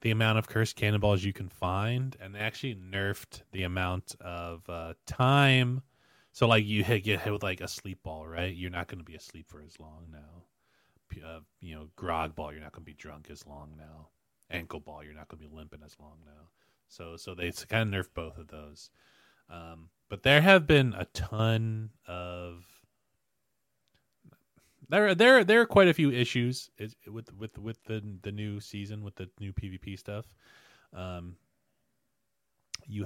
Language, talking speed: English, 185 wpm